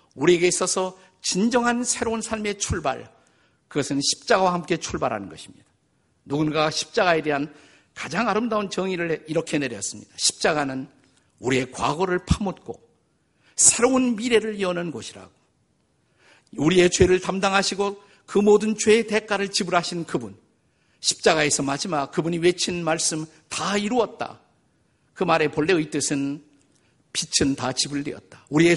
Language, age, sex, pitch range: Korean, 50-69, male, 145-200 Hz